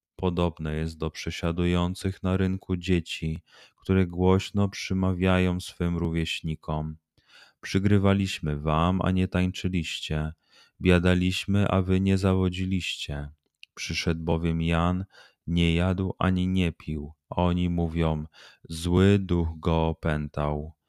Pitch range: 80-95 Hz